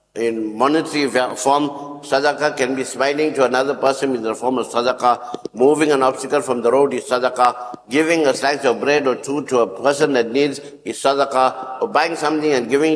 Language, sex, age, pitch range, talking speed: English, male, 60-79, 120-150 Hz, 195 wpm